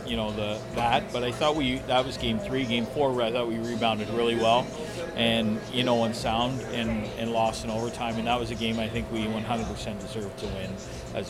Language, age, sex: English, 40-59, male